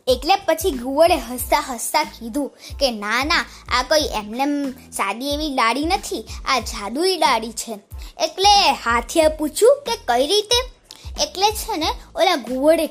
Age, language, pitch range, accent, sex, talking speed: 20-39, Gujarati, 250-375 Hz, native, female, 110 wpm